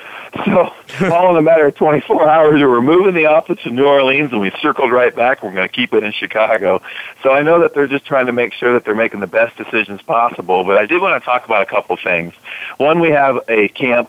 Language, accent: English, American